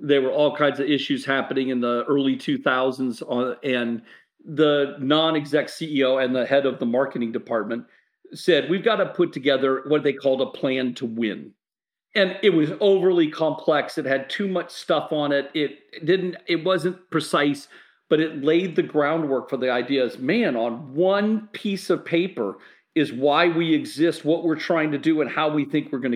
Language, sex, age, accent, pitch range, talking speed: English, male, 50-69, American, 135-190 Hz, 185 wpm